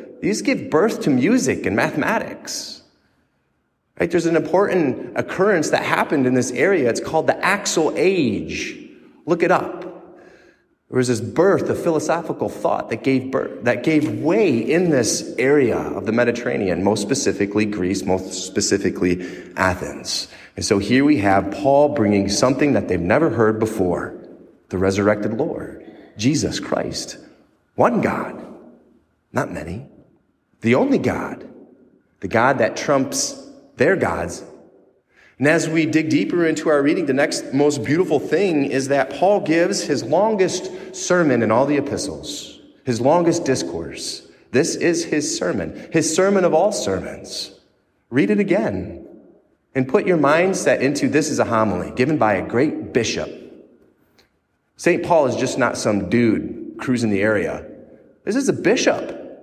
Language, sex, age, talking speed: English, male, 30-49, 150 wpm